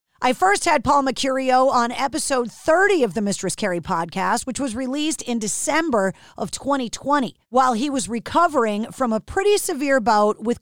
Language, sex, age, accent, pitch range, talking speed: English, female, 40-59, American, 230-310 Hz, 170 wpm